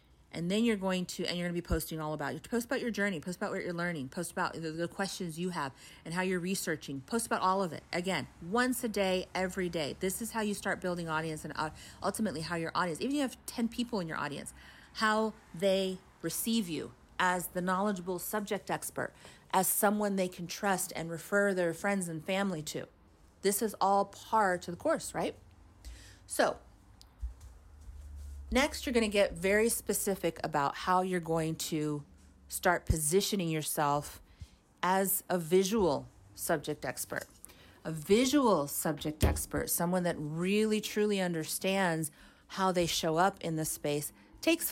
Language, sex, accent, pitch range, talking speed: English, female, American, 155-200 Hz, 180 wpm